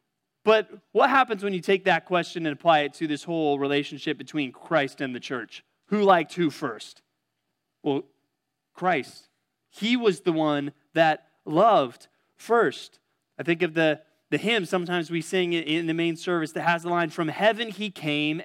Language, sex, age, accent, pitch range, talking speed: English, male, 30-49, American, 150-190 Hz, 175 wpm